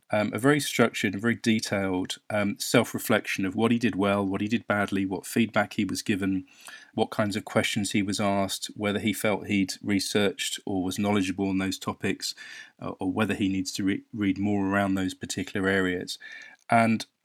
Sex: male